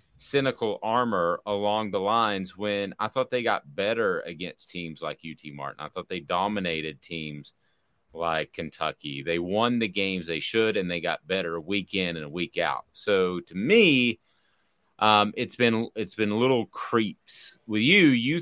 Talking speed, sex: 170 wpm, male